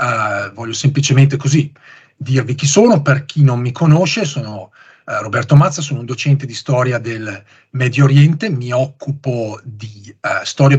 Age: 40-59